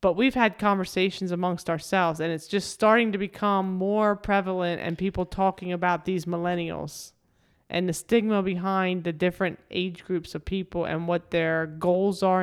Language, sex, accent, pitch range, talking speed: English, male, American, 170-190 Hz, 170 wpm